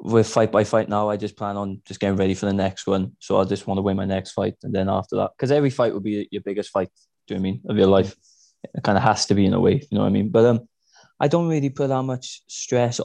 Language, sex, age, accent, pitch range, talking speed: English, male, 20-39, British, 95-110 Hz, 315 wpm